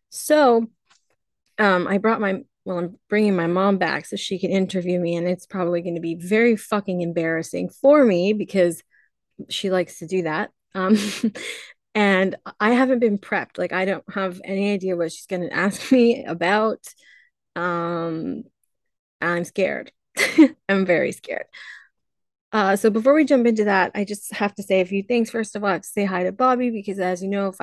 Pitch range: 180-215 Hz